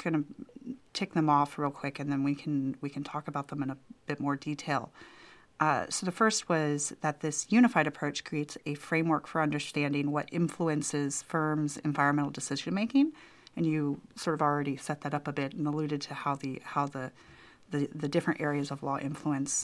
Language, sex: English, female